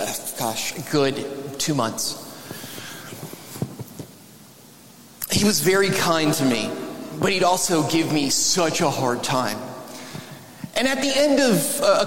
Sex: male